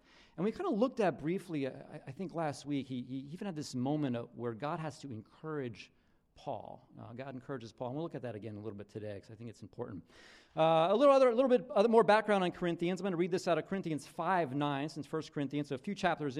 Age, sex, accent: 40-59, male, American